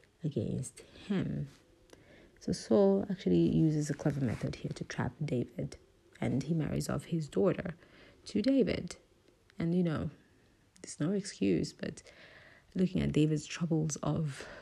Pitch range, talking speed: 135-175 Hz, 135 wpm